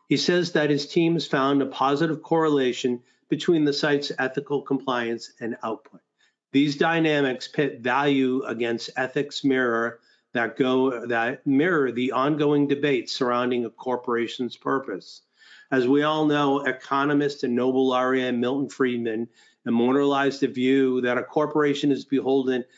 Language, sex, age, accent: English, male, 50-69, American